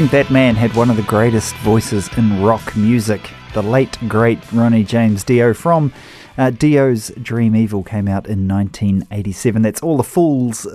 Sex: male